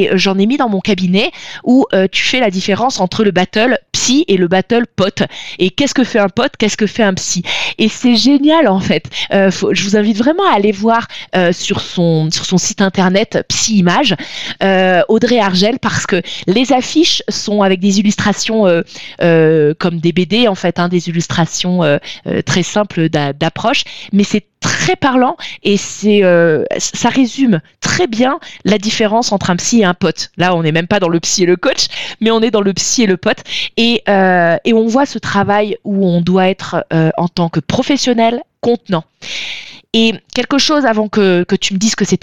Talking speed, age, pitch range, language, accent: 210 wpm, 20-39, 180-235 Hz, French, French